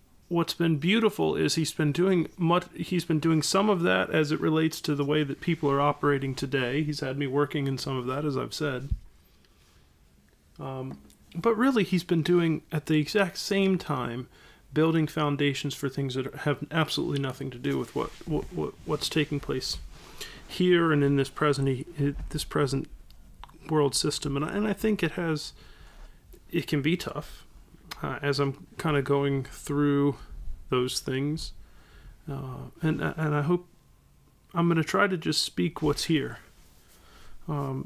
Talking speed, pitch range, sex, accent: 170 wpm, 135-160 Hz, male, American